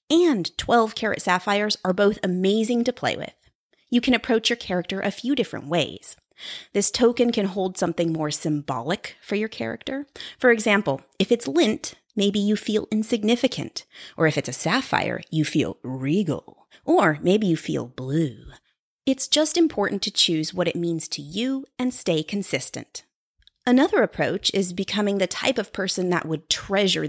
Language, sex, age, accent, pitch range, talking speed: English, female, 30-49, American, 165-235 Hz, 165 wpm